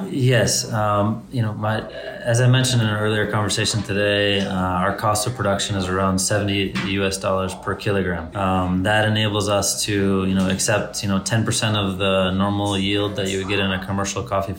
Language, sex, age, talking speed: English, male, 20-39, 200 wpm